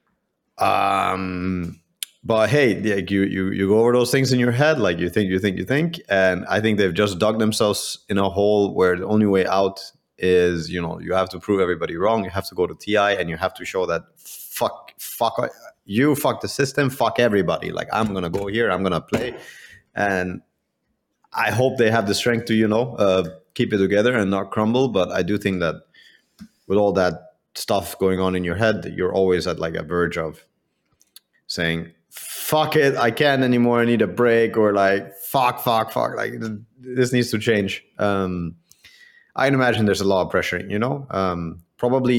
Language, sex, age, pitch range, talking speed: English, male, 30-49, 95-115 Hz, 210 wpm